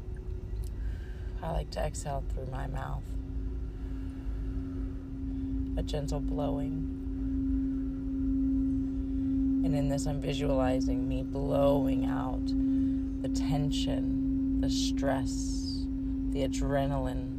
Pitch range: 90-135 Hz